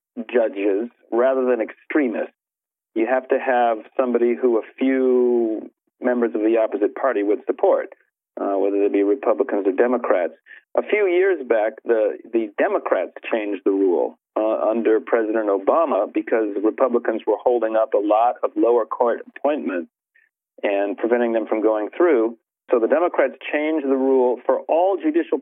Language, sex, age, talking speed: English, male, 40-59, 155 wpm